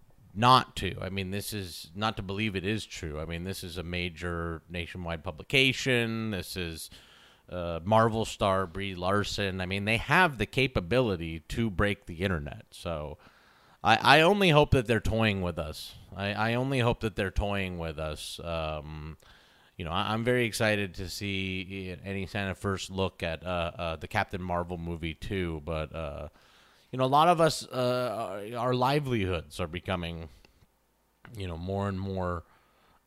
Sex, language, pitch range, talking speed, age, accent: male, English, 90-115 Hz, 170 wpm, 30-49, American